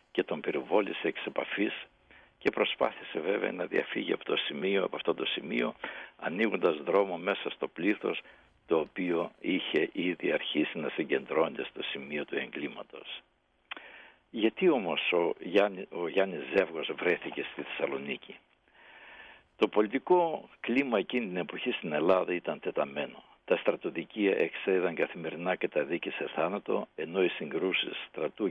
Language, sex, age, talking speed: Greek, male, 60-79, 140 wpm